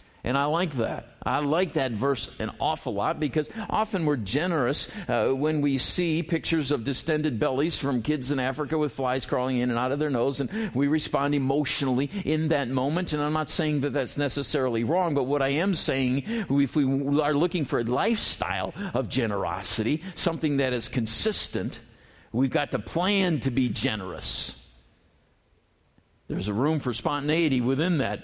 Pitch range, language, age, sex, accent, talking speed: 125-165 Hz, English, 50-69, male, American, 175 wpm